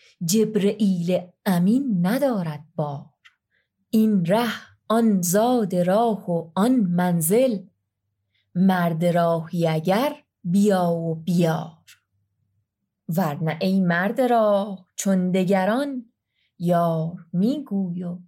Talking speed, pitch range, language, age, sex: 90 wpm, 175-220 Hz, Persian, 30-49, female